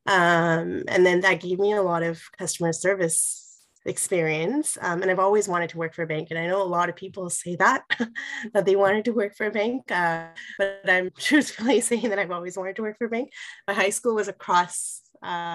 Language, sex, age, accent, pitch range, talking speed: English, female, 20-39, American, 160-195 Hz, 225 wpm